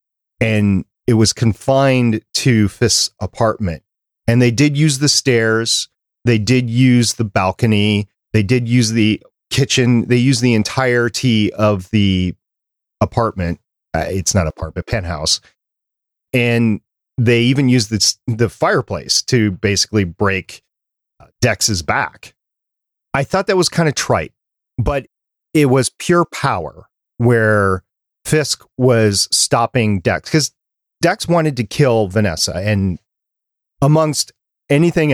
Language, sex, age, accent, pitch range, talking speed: English, male, 40-59, American, 100-130 Hz, 125 wpm